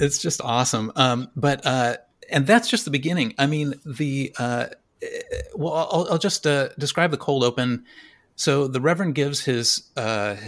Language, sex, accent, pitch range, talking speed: English, male, American, 110-140 Hz, 170 wpm